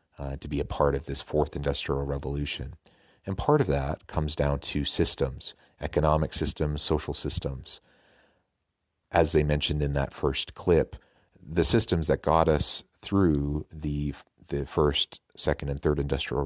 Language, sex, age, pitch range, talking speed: English, male, 40-59, 70-80 Hz, 155 wpm